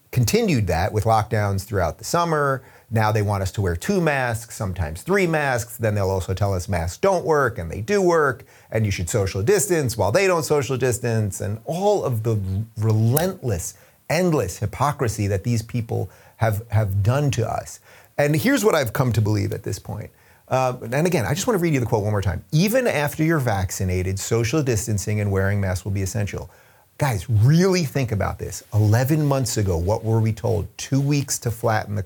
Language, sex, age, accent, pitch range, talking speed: English, male, 30-49, American, 100-135 Hz, 200 wpm